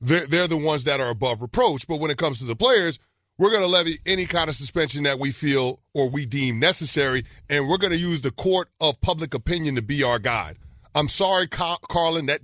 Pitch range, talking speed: 130-170 Hz, 225 wpm